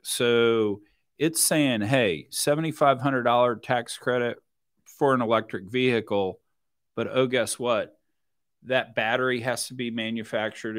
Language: English